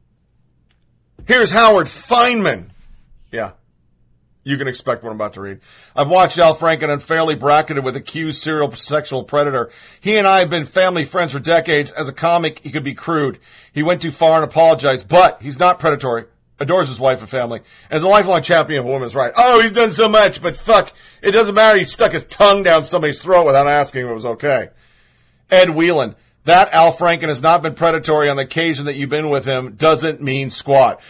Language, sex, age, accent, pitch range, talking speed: English, male, 40-59, American, 140-185 Hz, 200 wpm